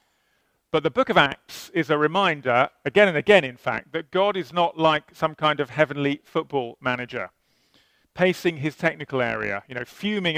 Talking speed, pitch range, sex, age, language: 180 wpm, 130-170 Hz, male, 40-59, English